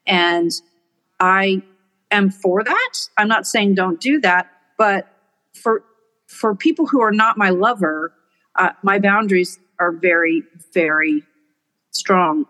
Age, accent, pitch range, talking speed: 50-69, American, 170-225 Hz, 130 wpm